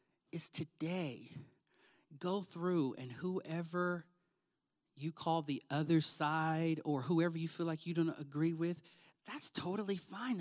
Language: English